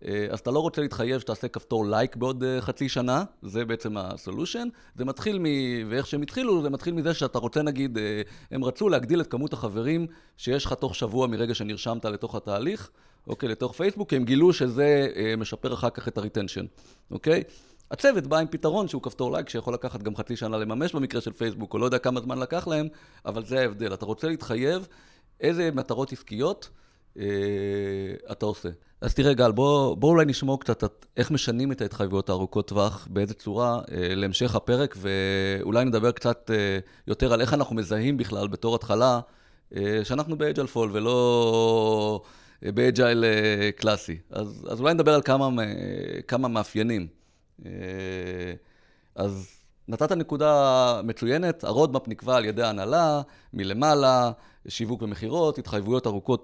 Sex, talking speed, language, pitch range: male, 160 wpm, Hebrew, 105-135 Hz